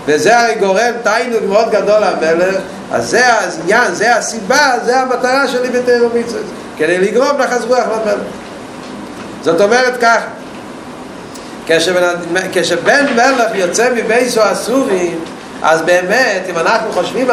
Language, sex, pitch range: Hebrew, male, 195-235 Hz